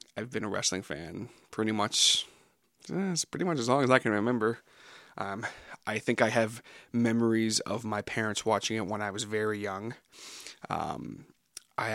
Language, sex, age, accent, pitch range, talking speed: English, male, 20-39, American, 105-120 Hz, 170 wpm